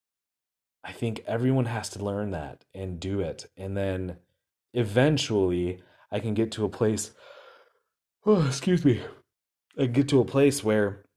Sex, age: male, 30-49